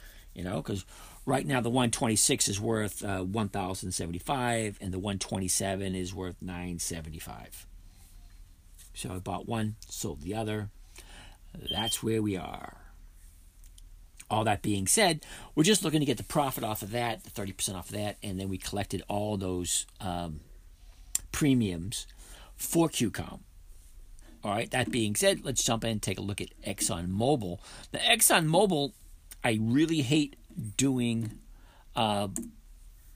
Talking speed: 140 wpm